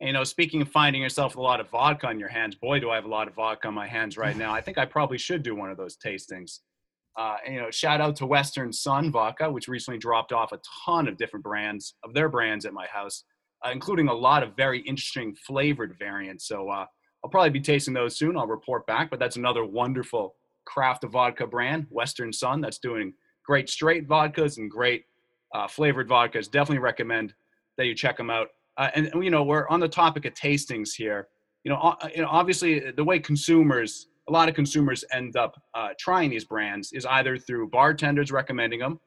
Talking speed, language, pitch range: 225 wpm, English, 115-150 Hz